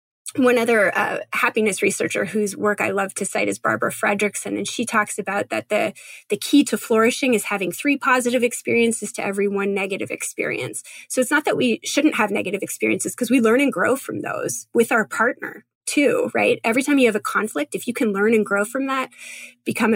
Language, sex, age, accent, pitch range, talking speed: English, female, 20-39, American, 200-250 Hz, 210 wpm